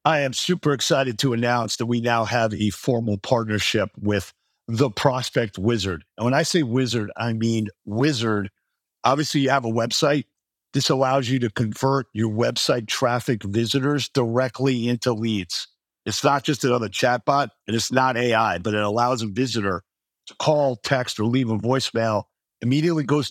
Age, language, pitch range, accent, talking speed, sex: 50-69, English, 115-135 Hz, American, 165 wpm, male